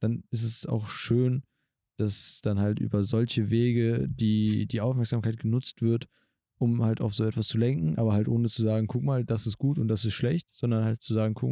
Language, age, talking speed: German, 20-39, 220 wpm